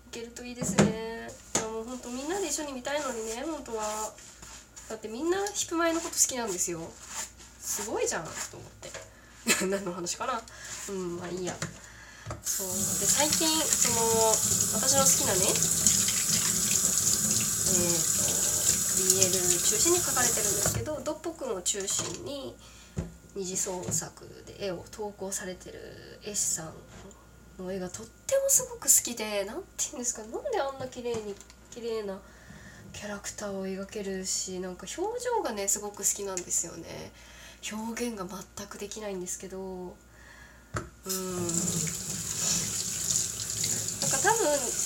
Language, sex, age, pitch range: Japanese, female, 20-39, 190-260 Hz